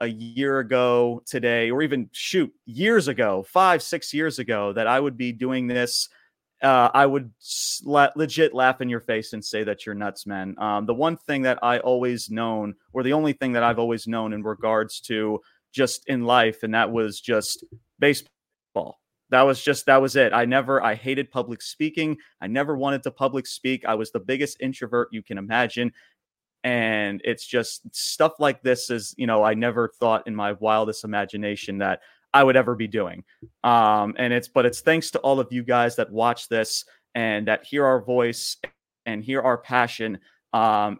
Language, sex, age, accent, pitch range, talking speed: English, male, 30-49, American, 110-135 Hz, 195 wpm